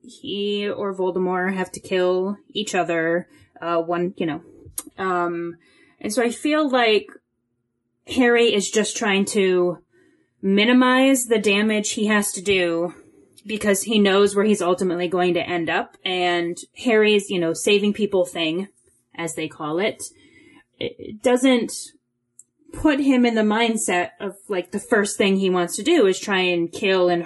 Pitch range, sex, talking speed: 175-235 Hz, female, 160 wpm